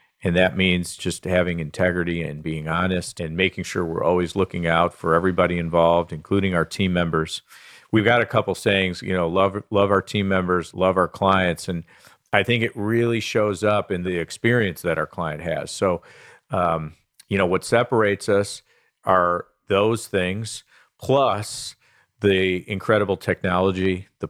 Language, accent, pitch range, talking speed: English, American, 85-100 Hz, 165 wpm